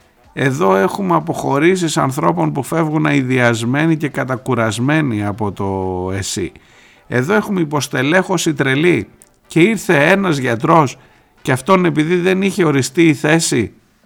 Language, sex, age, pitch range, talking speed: Greek, male, 50-69, 110-175 Hz, 120 wpm